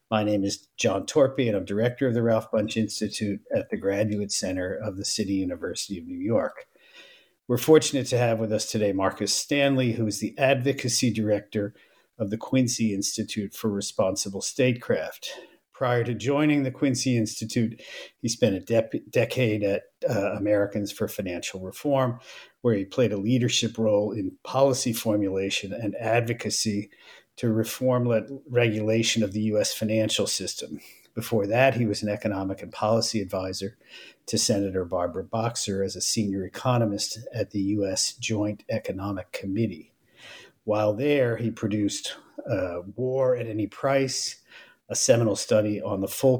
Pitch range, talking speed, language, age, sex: 100-120 Hz, 155 wpm, English, 50-69, male